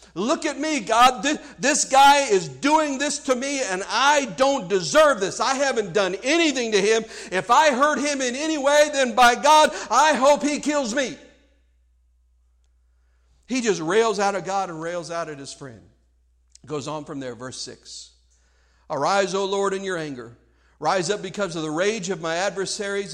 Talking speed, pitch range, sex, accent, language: 185 wpm, 150-220 Hz, male, American, English